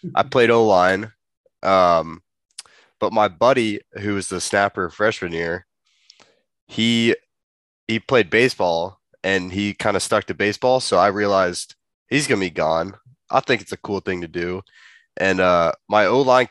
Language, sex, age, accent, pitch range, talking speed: English, male, 20-39, American, 85-105 Hz, 160 wpm